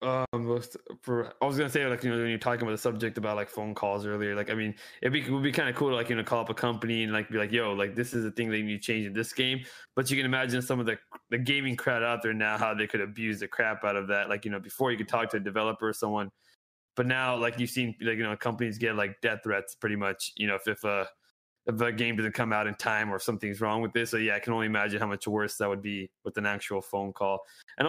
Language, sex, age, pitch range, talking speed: English, male, 20-39, 105-125 Hz, 310 wpm